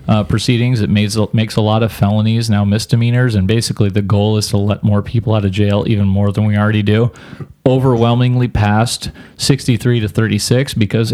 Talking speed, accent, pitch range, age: 190 wpm, American, 100-125 Hz, 30-49